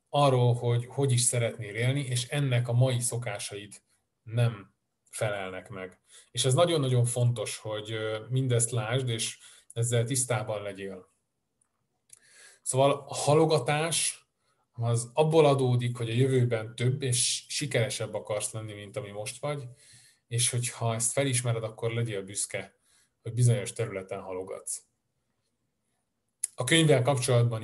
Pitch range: 115-130 Hz